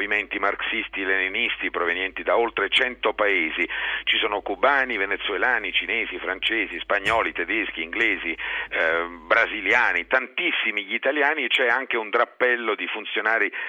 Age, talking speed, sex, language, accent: 50-69, 130 wpm, male, Italian, native